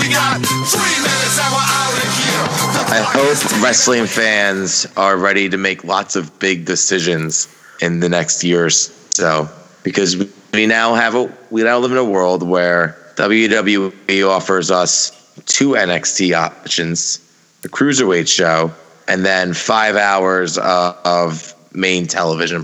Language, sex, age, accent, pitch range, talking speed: English, male, 30-49, American, 85-105 Hz, 120 wpm